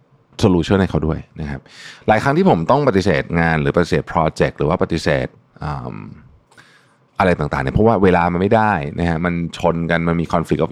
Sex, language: male, Thai